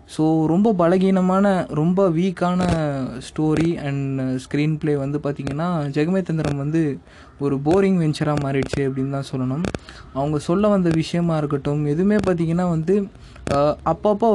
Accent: native